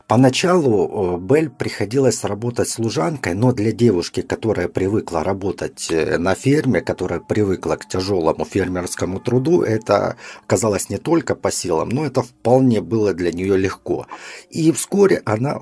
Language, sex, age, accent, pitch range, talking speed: Russian, male, 50-69, native, 100-140 Hz, 135 wpm